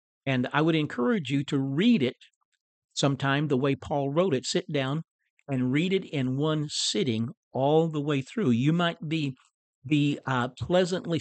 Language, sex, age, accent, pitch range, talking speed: English, male, 50-69, American, 130-165 Hz, 170 wpm